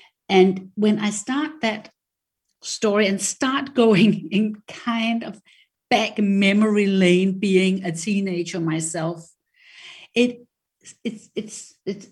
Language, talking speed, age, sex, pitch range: English, 115 wpm, 50-69, female, 170-215 Hz